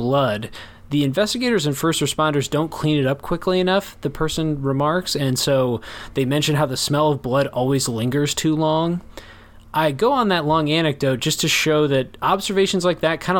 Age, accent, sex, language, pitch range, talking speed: 20-39, American, male, English, 135-160 Hz, 190 wpm